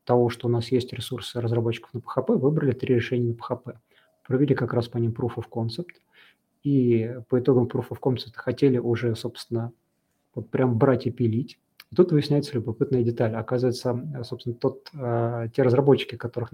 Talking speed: 175 wpm